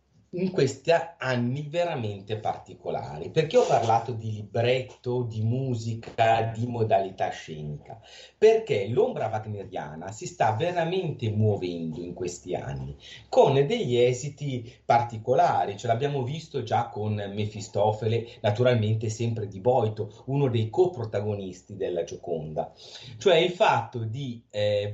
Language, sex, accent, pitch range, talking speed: Italian, male, native, 105-145 Hz, 120 wpm